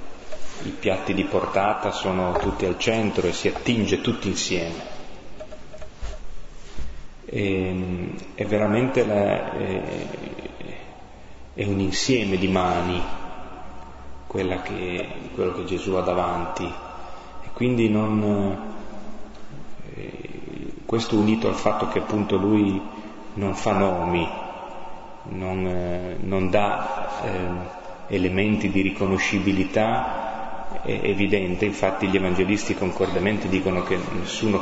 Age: 30-49